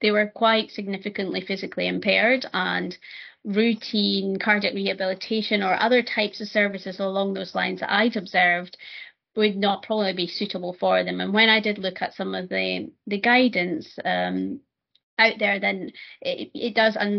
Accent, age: British, 30-49